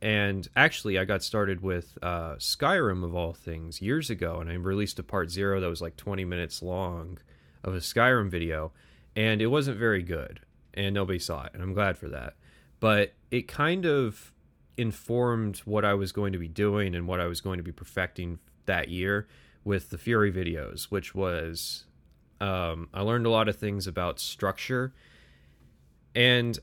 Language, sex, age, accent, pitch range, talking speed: English, male, 30-49, American, 85-105 Hz, 185 wpm